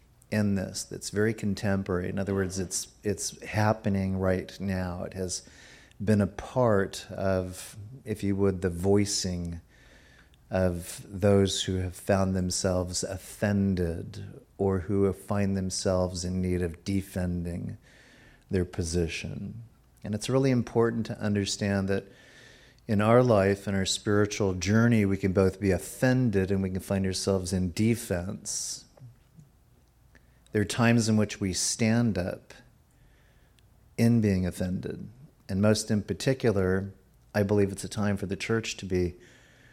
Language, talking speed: English, 140 wpm